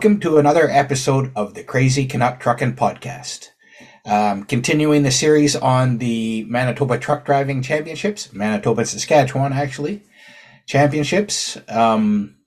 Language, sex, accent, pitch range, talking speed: English, male, American, 115-150 Hz, 120 wpm